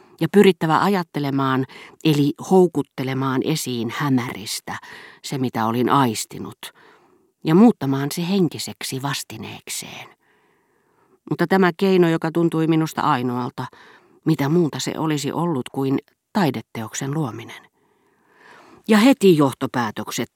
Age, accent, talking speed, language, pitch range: 40-59, native, 100 wpm, Finnish, 125-170 Hz